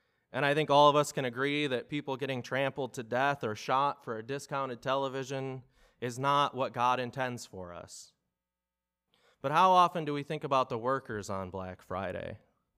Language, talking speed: English, 185 wpm